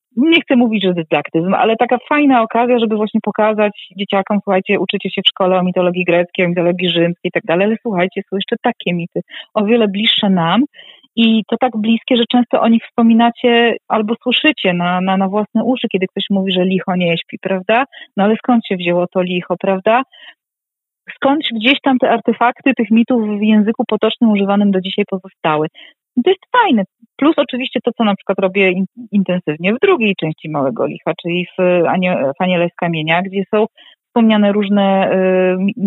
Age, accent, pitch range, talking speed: 30-49, native, 190-245 Hz, 180 wpm